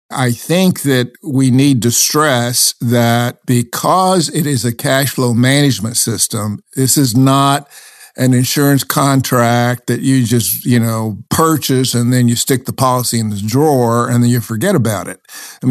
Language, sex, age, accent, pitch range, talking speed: English, male, 60-79, American, 120-140 Hz, 170 wpm